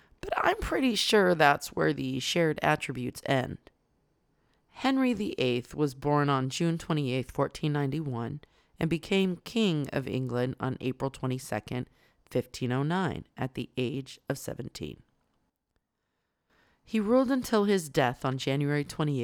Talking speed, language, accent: 125 wpm, English, American